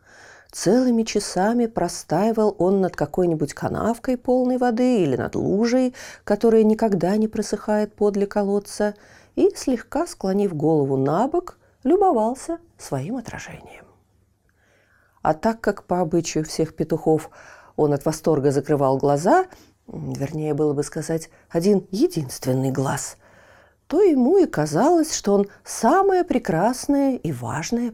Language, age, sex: Russian, 40-59, female